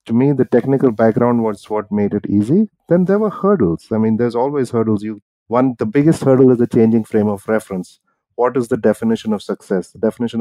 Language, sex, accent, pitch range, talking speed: English, male, Indian, 100-125 Hz, 220 wpm